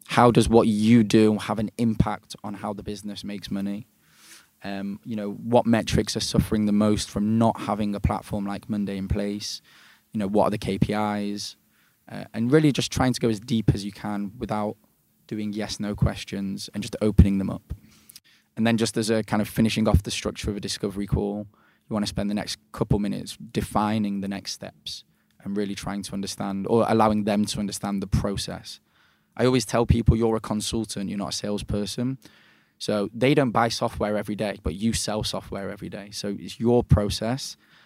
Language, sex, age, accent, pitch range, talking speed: English, male, 10-29, British, 100-110 Hz, 200 wpm